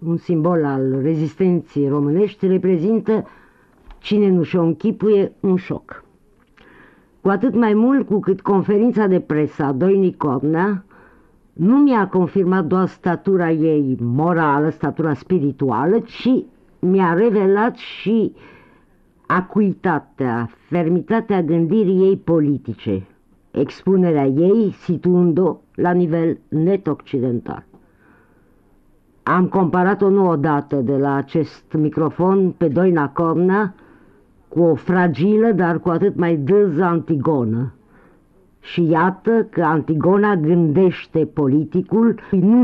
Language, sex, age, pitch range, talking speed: Romanian, female, 50-69, 150-195 Hz, 105 wpm